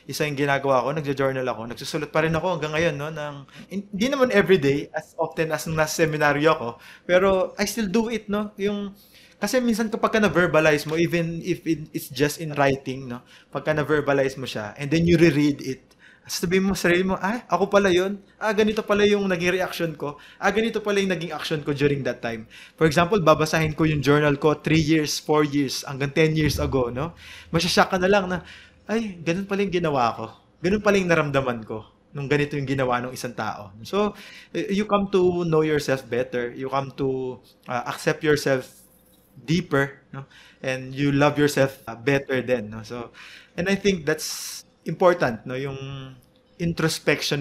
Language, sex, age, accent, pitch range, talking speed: Filipino, male, 20-39, native, 130-180 Hz, 185 wpm